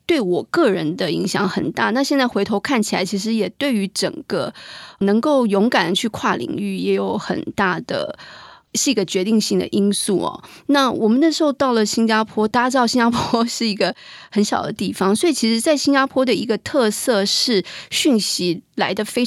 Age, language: 30-49, Chinese